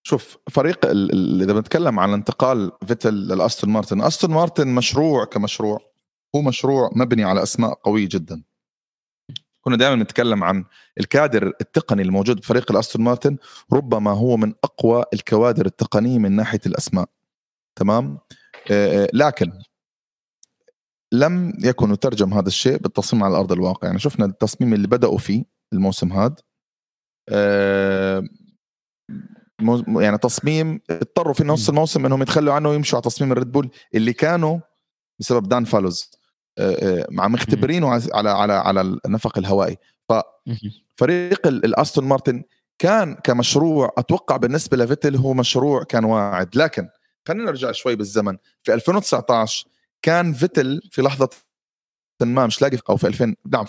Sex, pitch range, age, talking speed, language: male, 105-145 Hz, 30-49, 130 wpm, Arabic